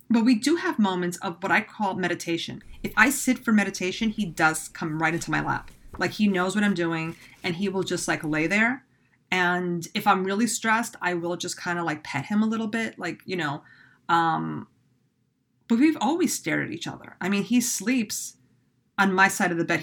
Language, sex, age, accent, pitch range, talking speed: English, female, 30-49, American, 155-205 Hz, 220 wpm